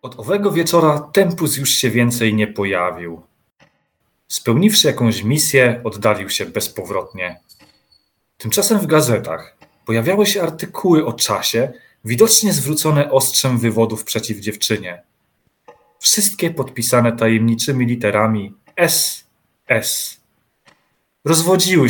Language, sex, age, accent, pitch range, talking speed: Polish, male, 30-49, native, 110-155 Hz, 100 wpm